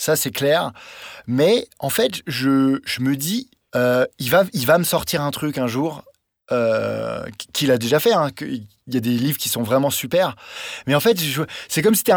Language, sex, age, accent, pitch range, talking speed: French, male, 20-39, French, 120-170 Hz, 215 wpm